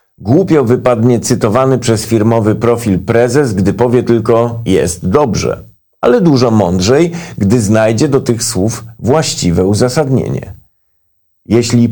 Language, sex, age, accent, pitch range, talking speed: Polish, male, 50-69, native, 100-130 Hz, 115 wpm